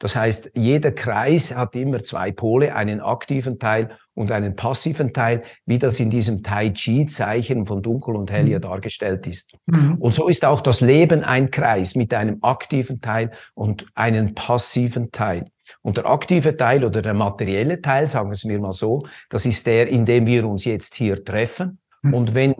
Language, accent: German, Austrian